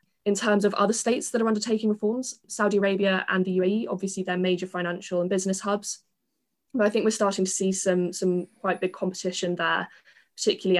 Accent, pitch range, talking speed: British, 175-200 Hz, 195 wpm